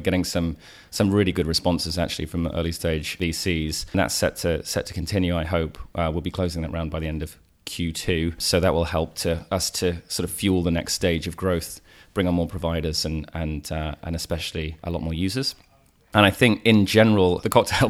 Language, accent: English, British